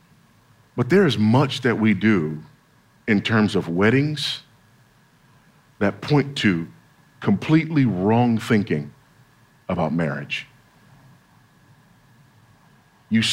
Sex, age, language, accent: male, 50-69, English, American